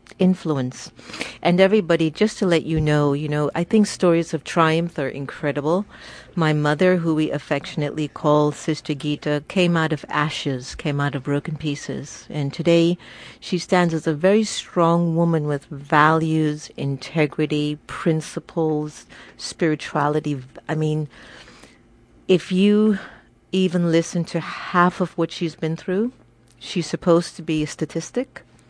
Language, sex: English, female